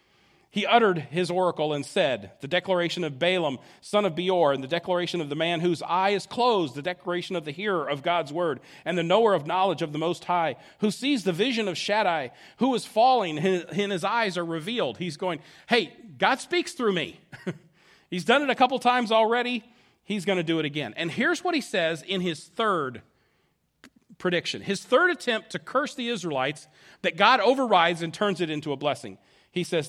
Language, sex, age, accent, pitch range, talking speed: English, male, 40-59, American, 165-225 Hz, 205 wpm